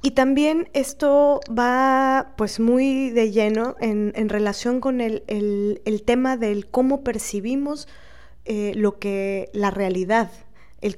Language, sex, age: Spanish, female, 20-39